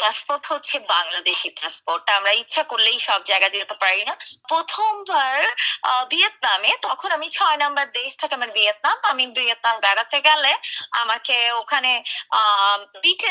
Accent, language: native, Bengali